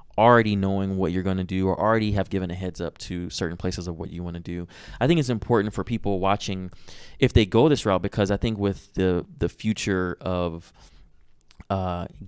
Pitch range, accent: 90-105 Hz, American